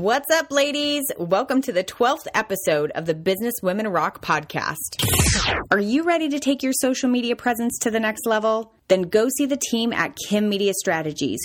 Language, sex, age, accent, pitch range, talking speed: English, female, 30-49, American, 160-235 Hz, 190 wpm